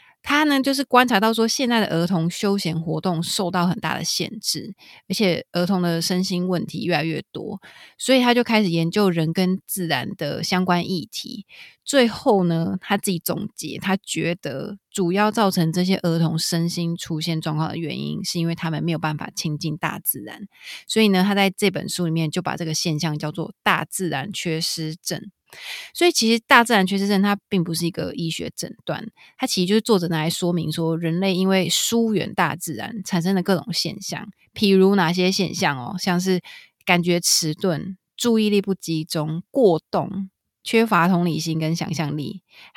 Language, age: Chinese, 20-39